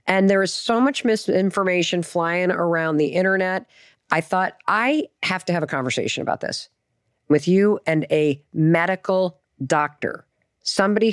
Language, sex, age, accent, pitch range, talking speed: English, female, 40-59, American, 155-200 Hz, 145 wpm